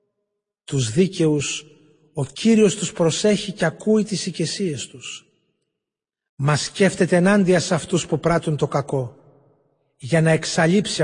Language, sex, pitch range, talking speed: Greek, male, 145-180 Hz, 125 wpm